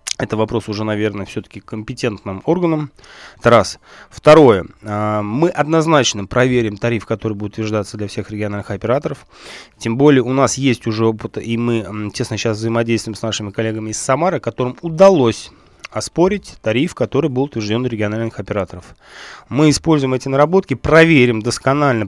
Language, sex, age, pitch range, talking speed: Russian, male, 20-39, 110-135 Hz, 145 wpm